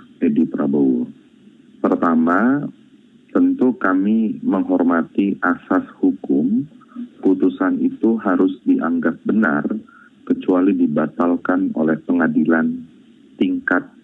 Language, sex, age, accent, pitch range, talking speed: Indonesian, male, 30-49, native, 220-270 Hz, 75 wpm